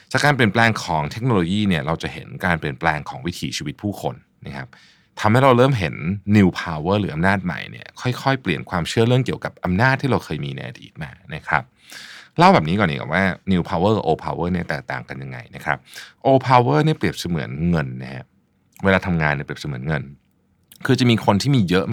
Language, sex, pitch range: Thai, male, 80-115 Hz